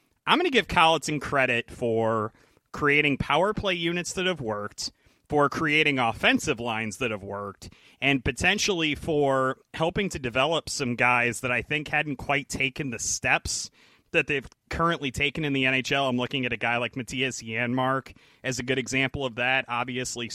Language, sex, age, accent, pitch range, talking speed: English, male, 30-49, American, 120-145 Hz, 175 wpm